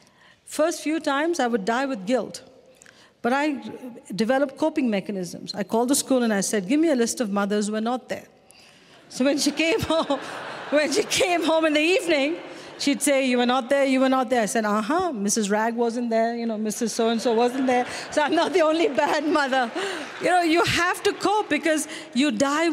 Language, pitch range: Persian, 230-315 Hz